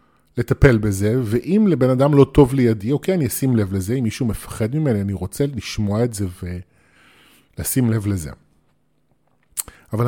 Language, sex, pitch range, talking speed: Hebrew, male, 110-155 Hz, 155 wpm